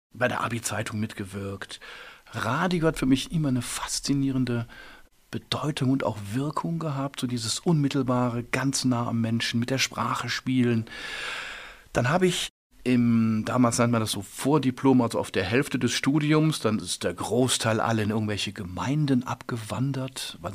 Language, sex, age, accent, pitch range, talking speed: German, male, 50-69, German, 105-130 Hz, 155 wpm